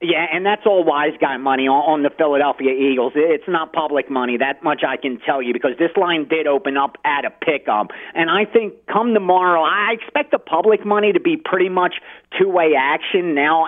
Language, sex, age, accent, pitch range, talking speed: English, male, 40-59, American, 135-185 Hz, 205 wpm